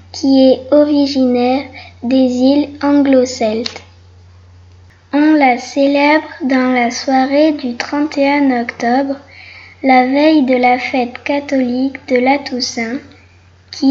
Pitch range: 240-280 Hz